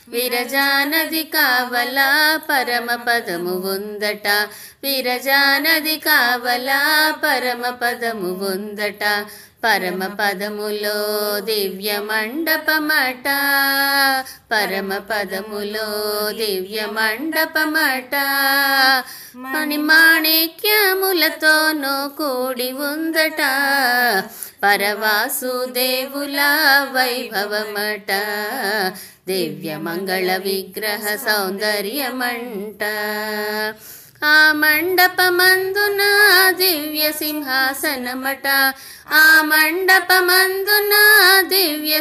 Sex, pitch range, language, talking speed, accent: female, 210-310 Hz, Telugu, 45 wpm, native